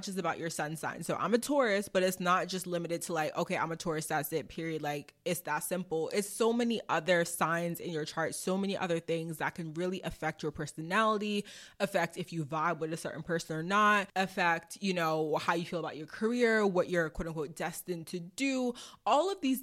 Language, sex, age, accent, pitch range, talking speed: English, female, 20-39, American, 165-210 Hz, 225 wpm